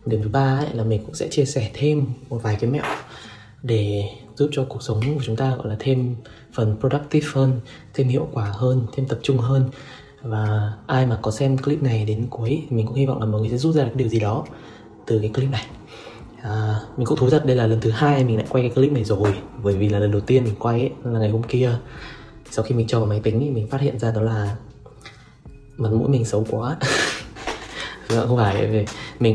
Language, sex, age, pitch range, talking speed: Vietnamese, male, 20-39, 110-135 Hz, 235 wpm